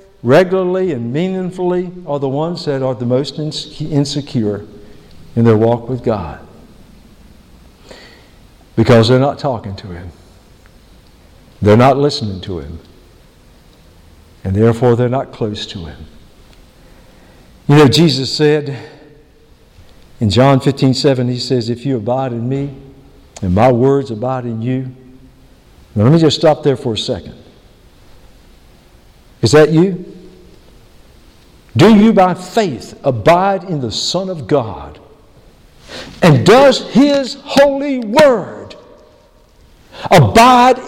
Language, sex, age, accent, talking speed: English, male, 60-79, American, 120 wpm